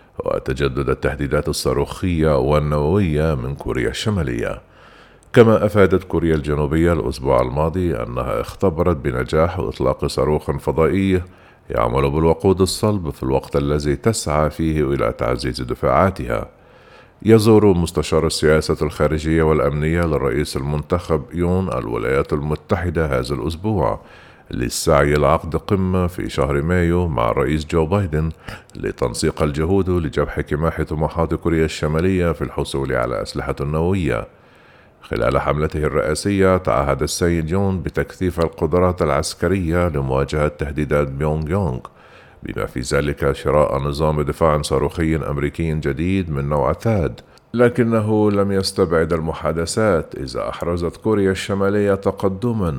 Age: 50-69